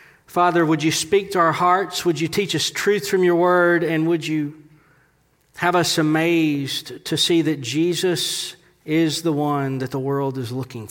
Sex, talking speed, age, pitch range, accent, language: male, 180 wpm, 40-59, 175-230 Hz, American, English